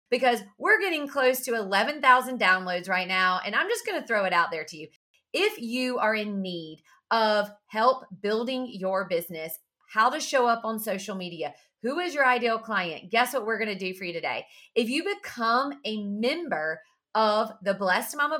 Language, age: English, 40-59